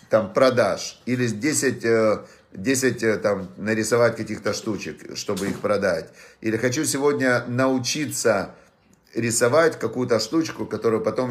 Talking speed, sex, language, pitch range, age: 110 wpm, male, Russian, 115-140 Hz, 50-69